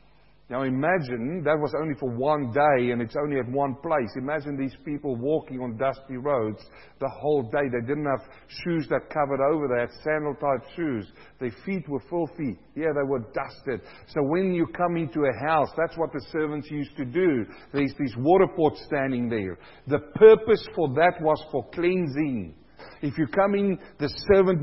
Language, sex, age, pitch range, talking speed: English, male, 50-69, 140-180 Hz, 185 wpm